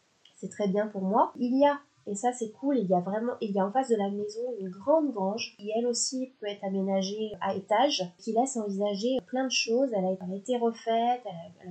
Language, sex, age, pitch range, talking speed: French, female, 20-39, 195-235 Hz, 235 wpm